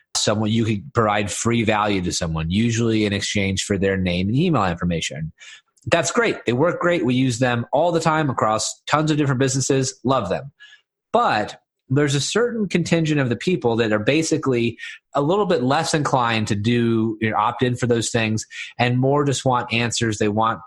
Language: English